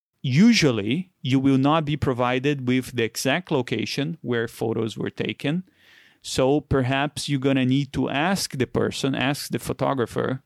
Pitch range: 125-150 Hz